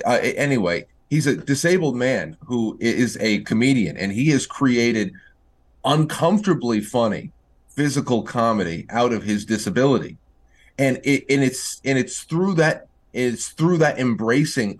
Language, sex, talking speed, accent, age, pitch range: English, male, 140 wpm, American, 30-49, 110-150 Hz